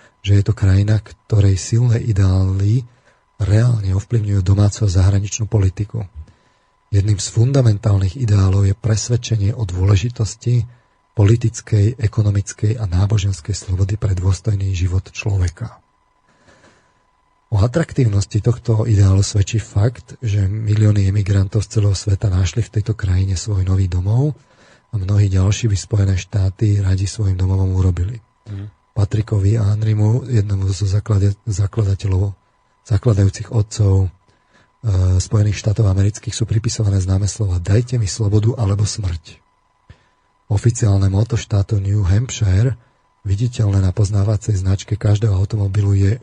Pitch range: 100-110 Hz